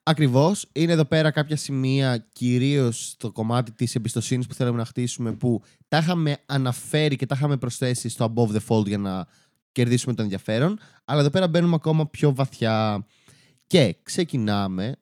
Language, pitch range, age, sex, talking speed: Greek, 120-145 Hz, 20-39, male, 165 wpm